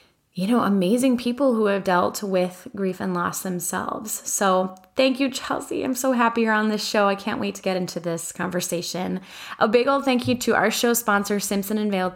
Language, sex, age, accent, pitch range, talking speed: English, female, 20-39, American, 185-240 Hz, 210 wpm